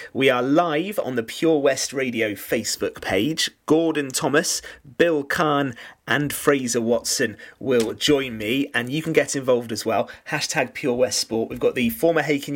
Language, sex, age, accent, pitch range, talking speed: English, male, 30-49, British, 115-150 Hz, 170 wpm